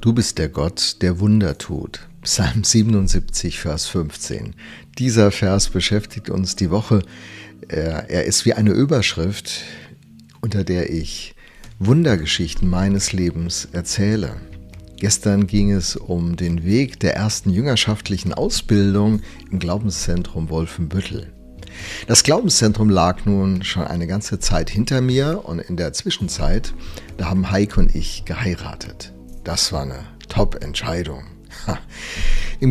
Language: German